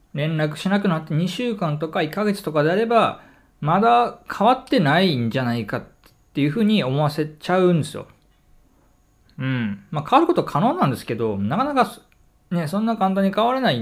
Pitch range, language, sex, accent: 140-210 Hz, Japanese, male, native